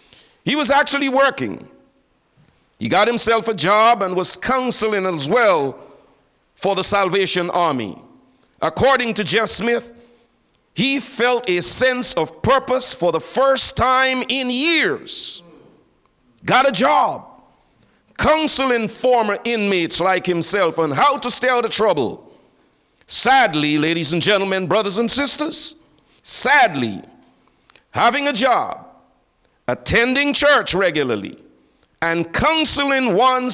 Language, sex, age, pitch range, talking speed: English, male, 50-69, 185-265 Hz, 120 wpm